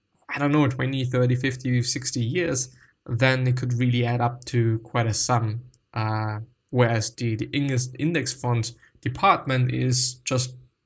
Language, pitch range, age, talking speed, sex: English, 120-140 Hz, 20-39, 150 wpm, male